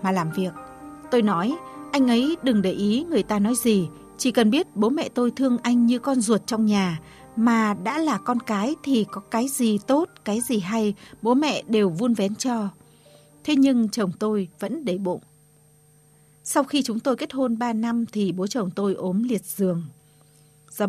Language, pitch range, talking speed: Vietnamese, 180-245 Hz, 200 wpm